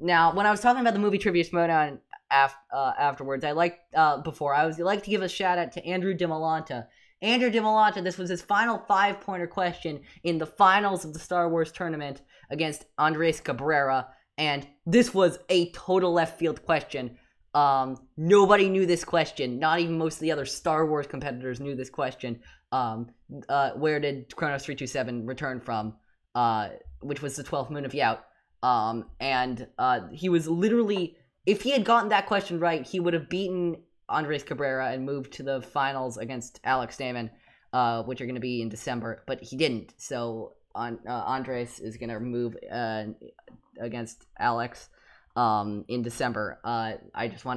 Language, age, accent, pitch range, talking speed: English, 10-29, American, 125-175 Hz, 180 wpm